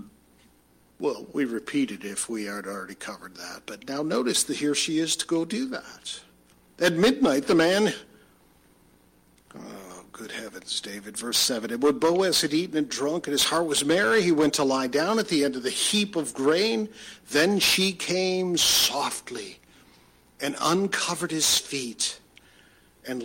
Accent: American